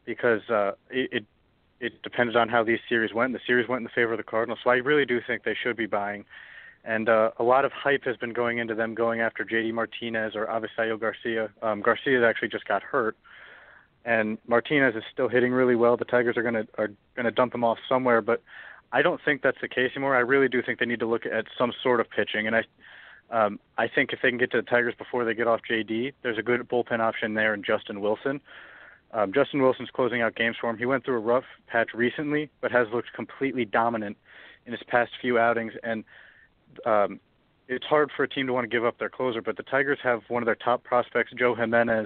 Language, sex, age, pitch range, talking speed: English, male, 30-49, 115-125 Hz, 240 wpm